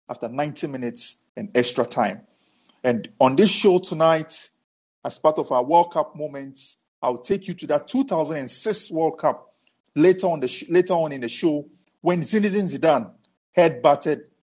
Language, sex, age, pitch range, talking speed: English, male, 50-69, 135-185 Hz, 160 wpm